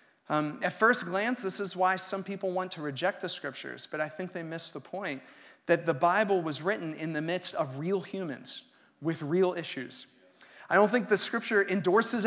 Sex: male